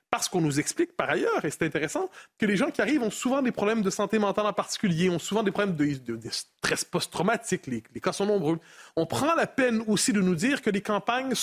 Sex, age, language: male, 30-49, French